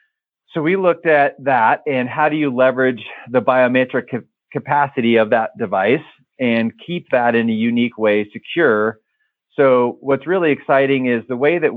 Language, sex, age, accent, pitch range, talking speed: English, male, 40-59, American, 110-140 Hz, 165 wpm